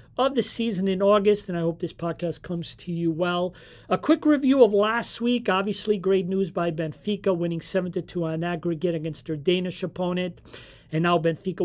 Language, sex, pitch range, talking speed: English, male, 160-200 Hz, 185 wpm